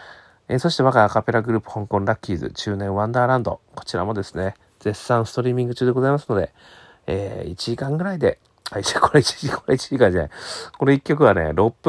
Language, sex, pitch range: Japanese, male, 95-125 Hz